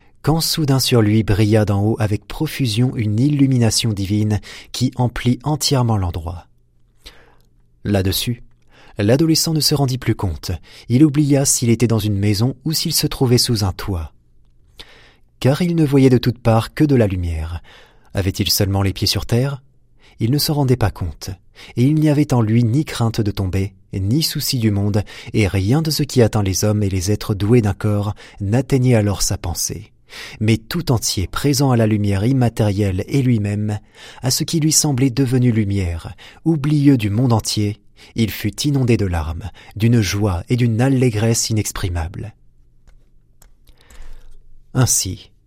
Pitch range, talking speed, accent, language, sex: 100-130 Hz, 165 wpm, French, French, male